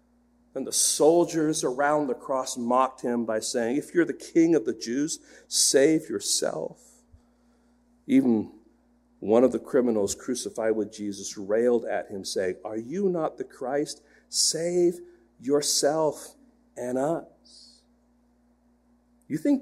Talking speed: 130 wpm